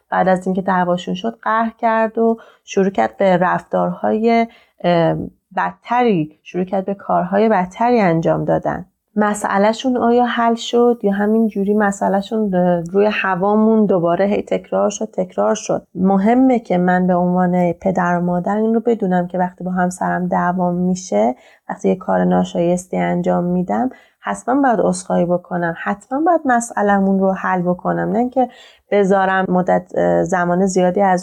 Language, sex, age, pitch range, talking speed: Persian, female, 30-49, 180-215 Hz, 140 wpm